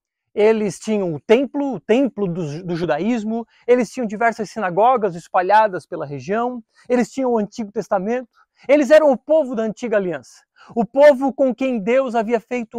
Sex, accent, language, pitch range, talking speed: male, Brazilian, Portuguese, 215-265 Hz, 165 wpm